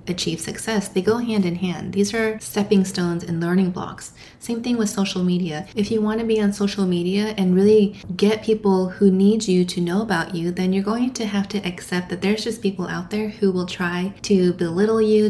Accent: American